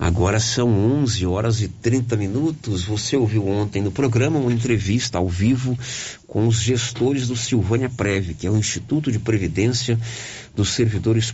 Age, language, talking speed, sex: 50-69, Portuguese, 160 wpm, male